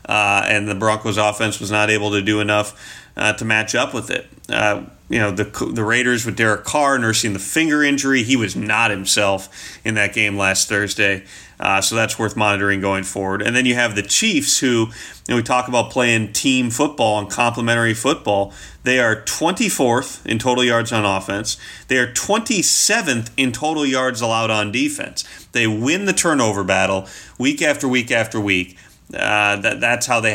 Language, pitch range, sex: English, 105-125 Hz, male